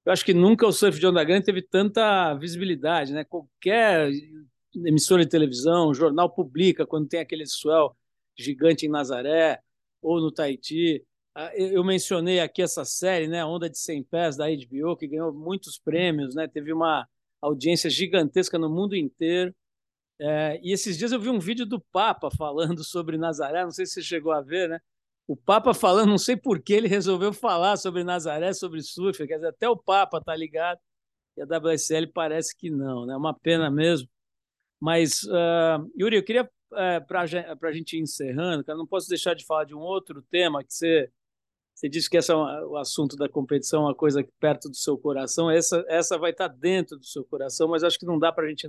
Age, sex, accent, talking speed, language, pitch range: 50-69, male, Brazilian, 200 wpm, Portuguese, 155-180 Hz